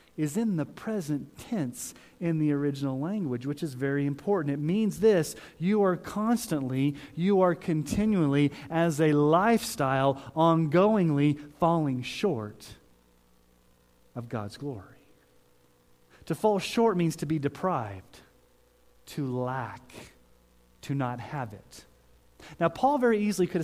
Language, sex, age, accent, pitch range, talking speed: English, male, 30-49, American, 120-170 Hz, 125 wpm